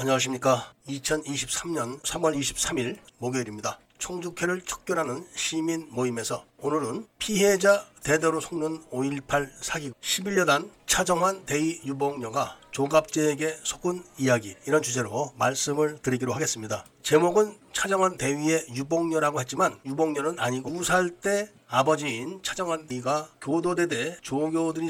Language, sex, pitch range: Korean, male, 135-175 Hz